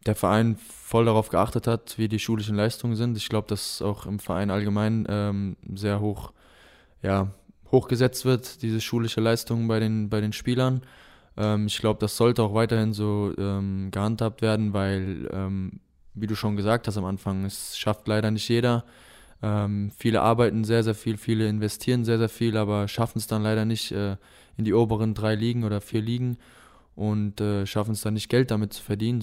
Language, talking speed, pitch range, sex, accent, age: German, 190 wpm, 105-115 Hz, male, German, 20-39